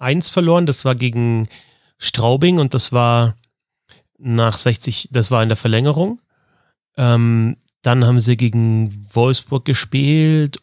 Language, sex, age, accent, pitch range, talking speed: German, male, 30-49, German, 120-160 Hz, 130 wpm